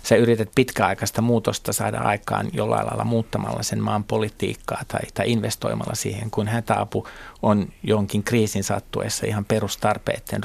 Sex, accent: male, native